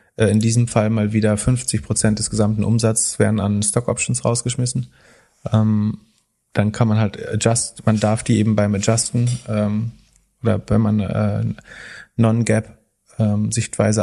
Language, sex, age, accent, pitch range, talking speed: German, male, 30-49, German, 100-115 Hz, 135 wpm